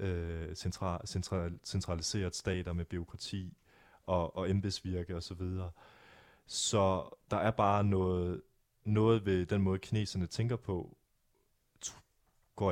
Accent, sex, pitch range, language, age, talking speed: native, male, 85-105 Hz, Danish, 30-49, 120 wpm